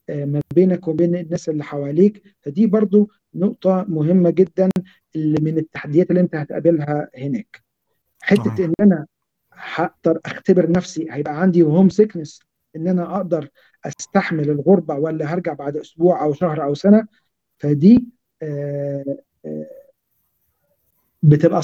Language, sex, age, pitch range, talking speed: Arabic, male, 50-69, 160-205 Hz, 120 wpm